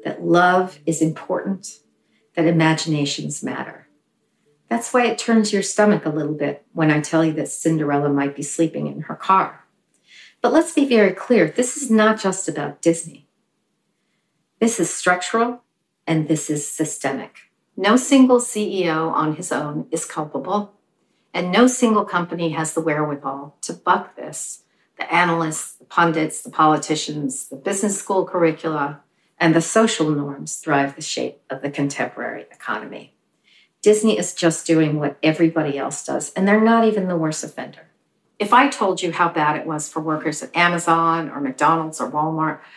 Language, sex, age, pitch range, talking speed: English, female, 40-59, 155-205 Hz, 165 wpm